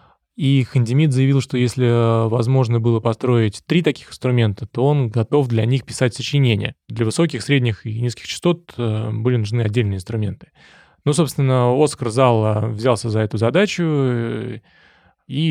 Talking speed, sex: 145 wpm, male